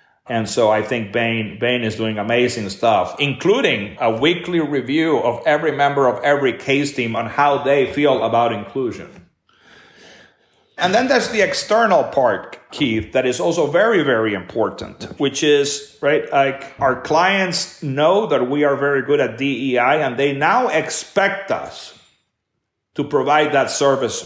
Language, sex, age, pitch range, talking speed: English, male, 40-59, 125-150 Hz, 155 wpm